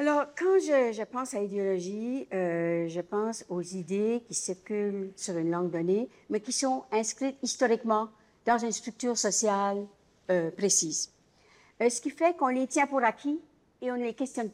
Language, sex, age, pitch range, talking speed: French, female, 60-79, 195-255 Hz, 180 wpm